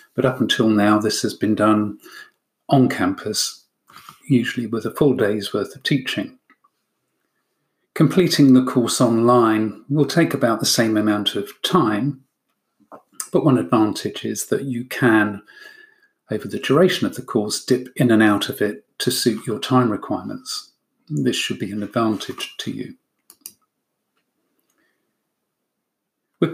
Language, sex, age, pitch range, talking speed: English, male, 40-59, 115-155 Hz, 140 wpm